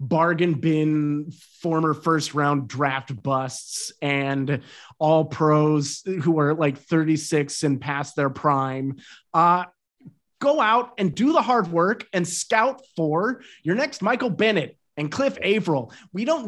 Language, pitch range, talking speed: English, 150-210 Hz, 140 wpm